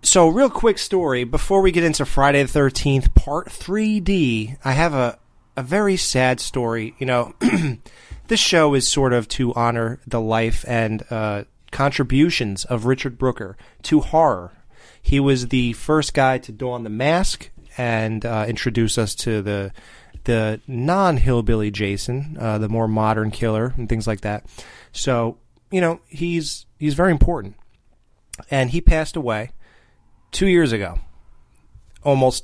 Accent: American